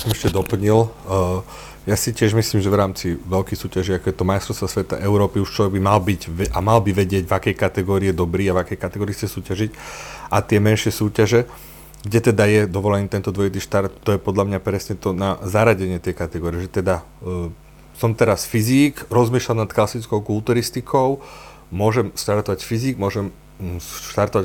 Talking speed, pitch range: 185 wpm, 95-115 Hz